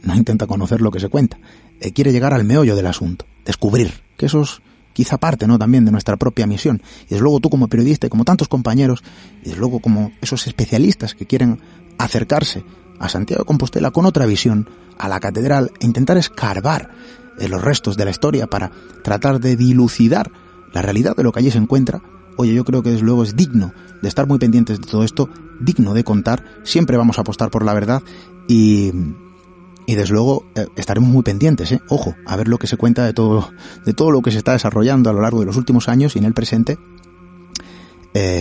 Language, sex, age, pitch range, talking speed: Spanish, male, 30-49, 105-145 Hz, 215 wpm